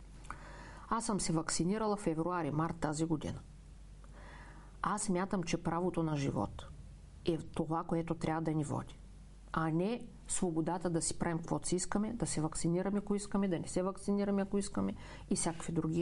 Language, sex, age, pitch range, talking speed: Bulgarian, female, 50-69, 160-205 Hz, 170 wpm